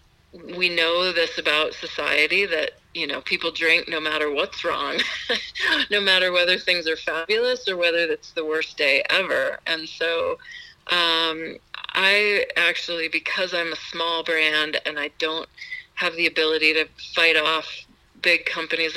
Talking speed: 150 wpm